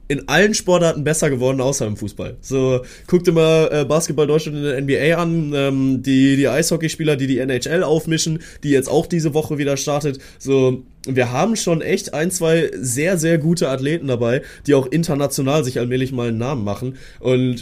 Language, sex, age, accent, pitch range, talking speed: German, male, 20-39, German, 120-150 Hz, 180 wpm